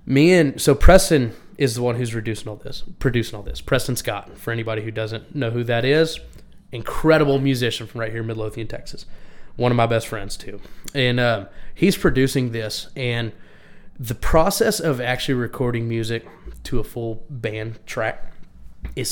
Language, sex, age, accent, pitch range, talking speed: English, male, 20-39, American, 115-135 Hz, 175 wpm